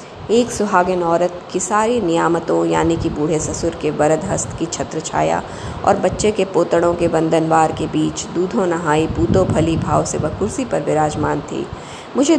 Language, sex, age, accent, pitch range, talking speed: Hindi, female, 20-39, native, 170-250 Hz, 170 wpm